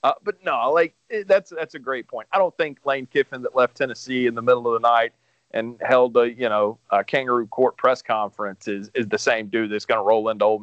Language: English